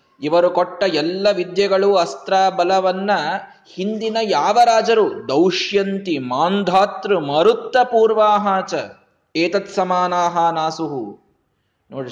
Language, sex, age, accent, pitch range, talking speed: Kannada, male, 20-39, native, 160-205 Hz, 75 wpm